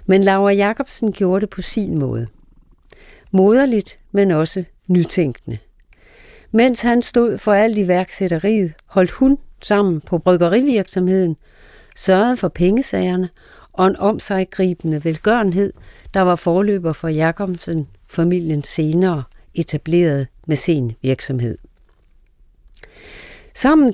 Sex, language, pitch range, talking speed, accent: female, Danish, 165-205 Hz, 110 wpm, native